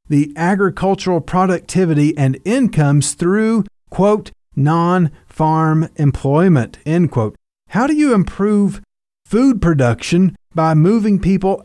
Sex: male